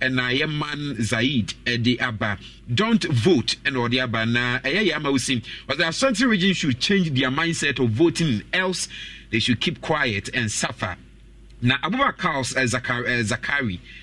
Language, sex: English, male